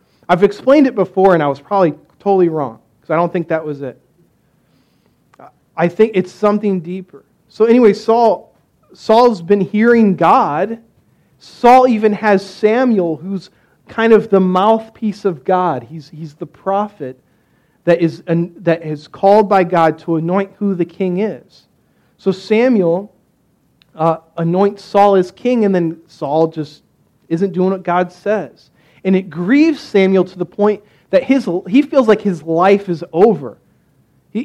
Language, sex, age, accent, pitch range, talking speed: English, male, 40-59, American, 165-210 Hz, 155 wpm